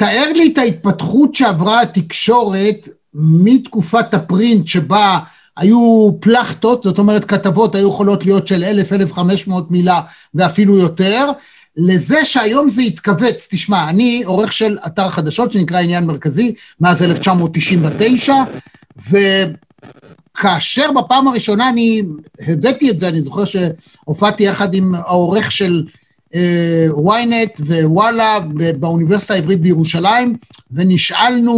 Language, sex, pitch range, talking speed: Hebrew, male, 175-225 Hz, 110 wpm